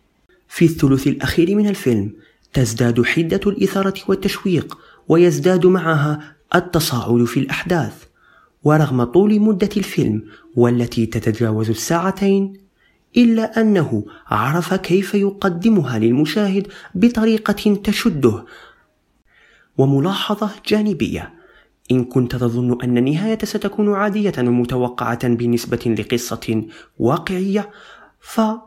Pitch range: 140-200 Hz